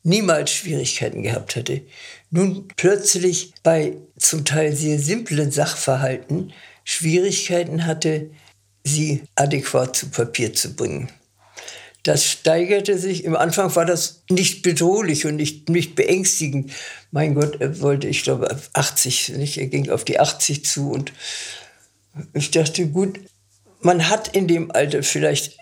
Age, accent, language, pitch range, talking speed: 60-79, German, German, 140-175 Hz, 135 wpm